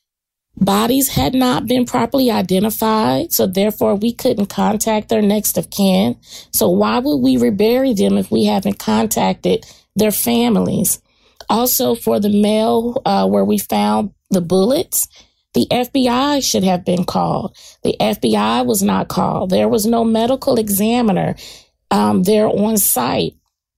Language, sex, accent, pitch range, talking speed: English, female, American, 200-245 Hz, 145 wpm